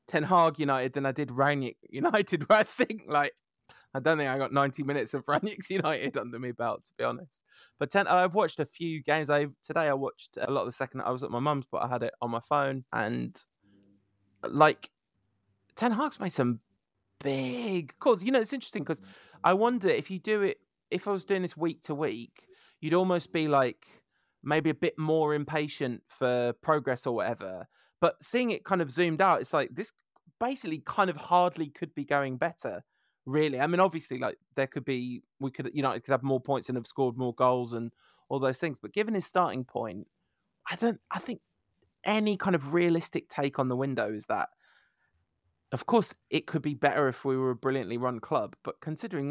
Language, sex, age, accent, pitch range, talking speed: English, male, 20-39, British, 130-175 Hz, 210 wpm